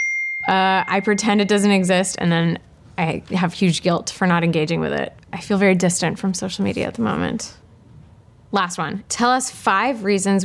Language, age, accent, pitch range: English, 20-39, American, 165-200 Hz